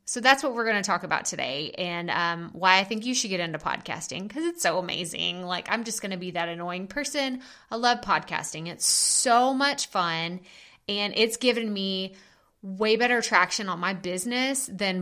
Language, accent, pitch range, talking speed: English, American, 180-225 Hz, 200 wpm